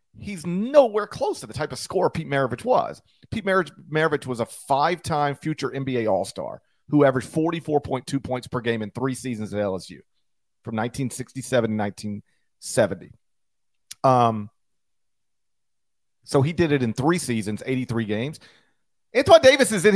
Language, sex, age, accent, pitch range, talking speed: English, male, 40-59, American, 125-185 Hz, 145 wpm